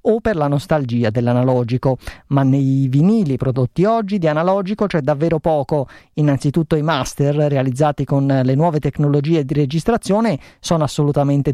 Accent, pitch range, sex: native, 135-170 Hz, male